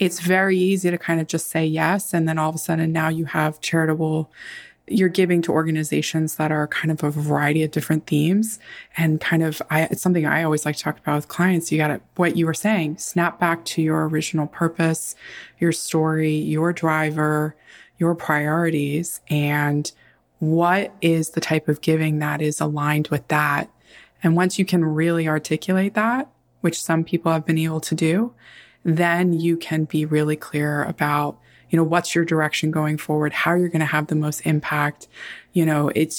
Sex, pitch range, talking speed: female, 150-170 Hz, 195 wpm